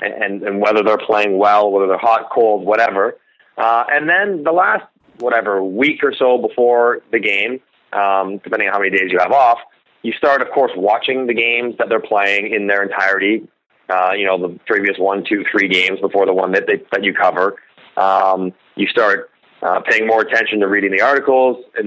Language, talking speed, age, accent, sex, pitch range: English, 205 wpm, 30-49, American, male, 100-130 Hz